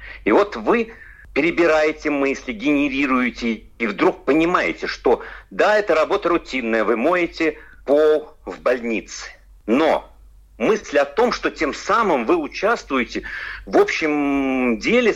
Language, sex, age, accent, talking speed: Russian, male, 50-69, native, 125 wpm